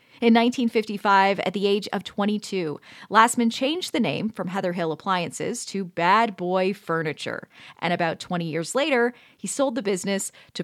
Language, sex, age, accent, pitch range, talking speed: English, female, 30-49, American, 195-270 Hz, 165 wpm